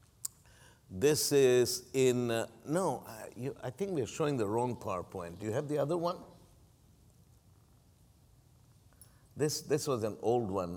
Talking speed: 145 wpm